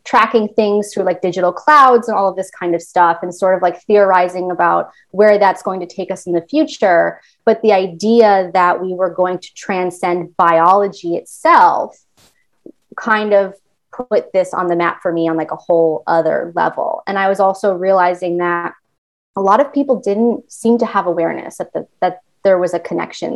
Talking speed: 195 wpm